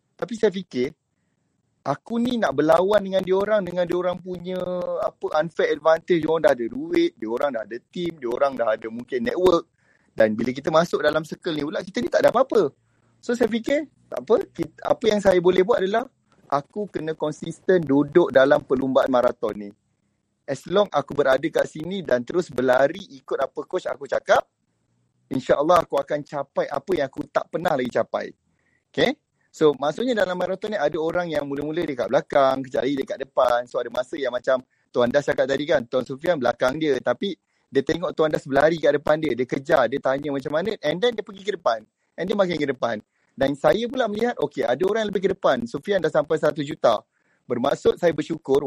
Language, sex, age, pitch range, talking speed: Malay, male, 30-49, 140-195 Hz, 200 wpm